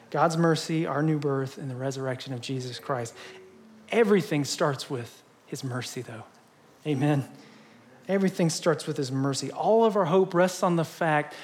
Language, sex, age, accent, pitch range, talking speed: English, male, 40-59, American, 140-180 Hz, 165 wpm